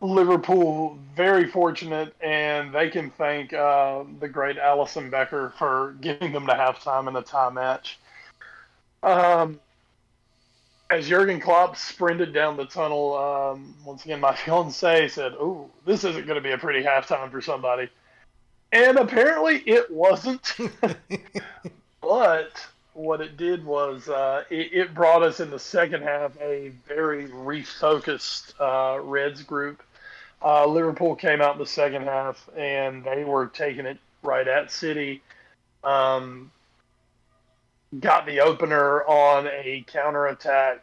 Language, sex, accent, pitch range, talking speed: English, male, American, 135-165 Hz, 135 wpm